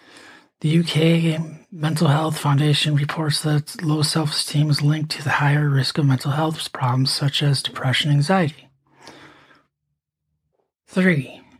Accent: American